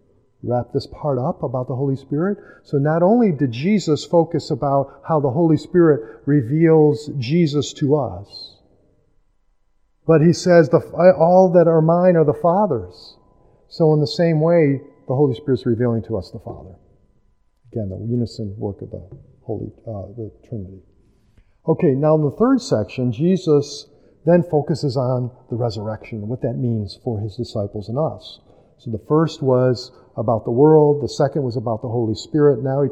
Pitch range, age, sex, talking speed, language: 110-155 Hz, 50-69, male, 170 wpm, English